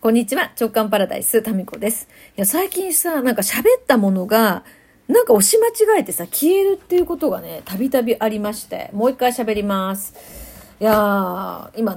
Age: 40-59